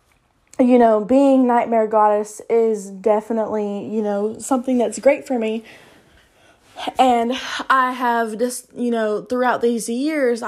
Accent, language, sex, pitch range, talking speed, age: American, English, female, 220-255 Hz, 130 wpm, 20-39